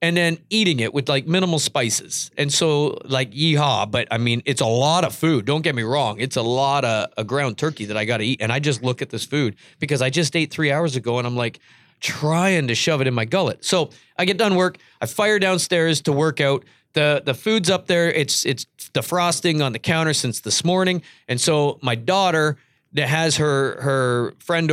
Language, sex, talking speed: English, male, 230 wpm